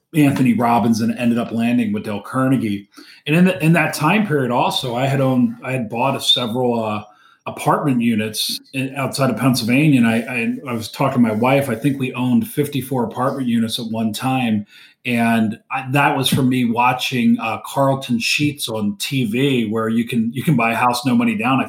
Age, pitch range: 40-59, 120-150 Hz